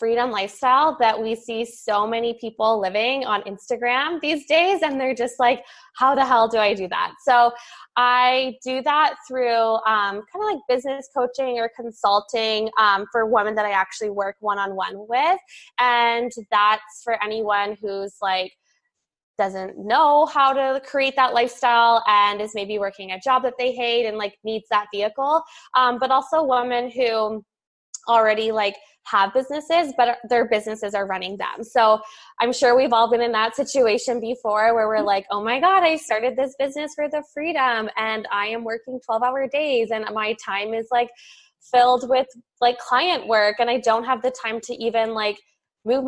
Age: 20-39